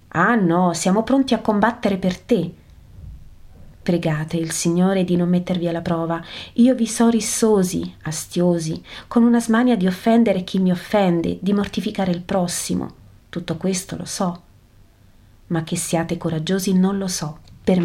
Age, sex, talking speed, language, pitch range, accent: 30-49, female, 150 wpm, Italian, 155-190 Hz, native